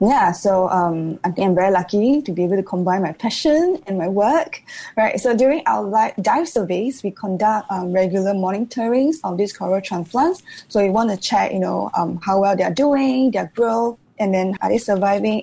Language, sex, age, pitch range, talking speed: English, female, 20-39, 185-235 Hz, 195 wpm